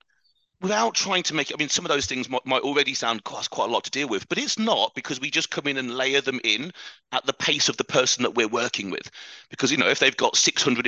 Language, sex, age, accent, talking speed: English, male, 40-59, British, 270 wpm